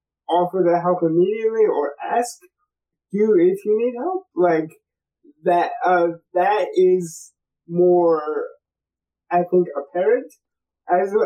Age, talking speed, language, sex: 20-39, 110 wpm, English, male